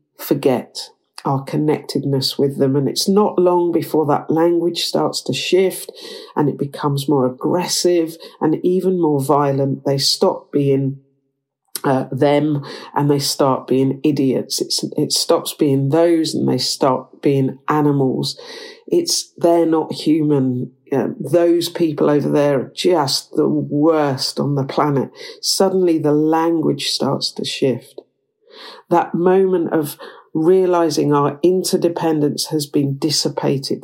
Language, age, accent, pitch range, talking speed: English, 50-69, British, 140-180 Hz, 135 wpm